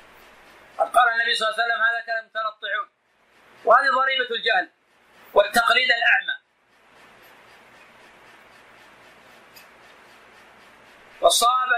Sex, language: male, Arabic